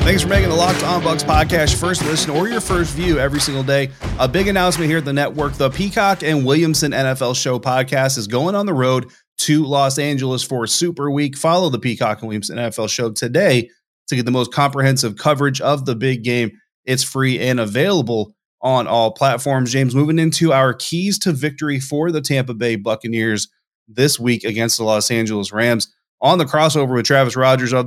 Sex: male